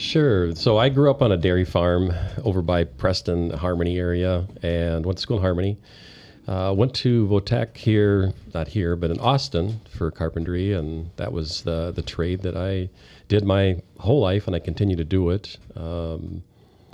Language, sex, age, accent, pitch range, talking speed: English, male, 40-59, American, 85-105 Hz, 185 wpm